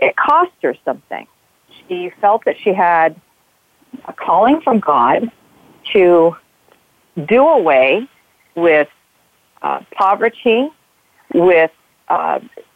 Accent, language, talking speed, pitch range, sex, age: American, English, 100 wpm, 160-215 Hz, female, 50-69